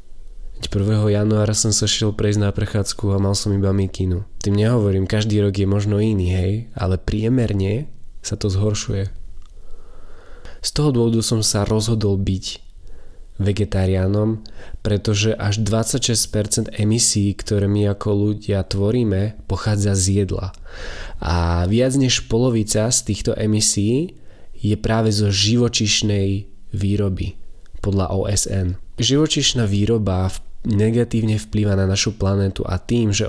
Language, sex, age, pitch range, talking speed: Slovak, male, 20-39, 100-110 Hz, 130 wpm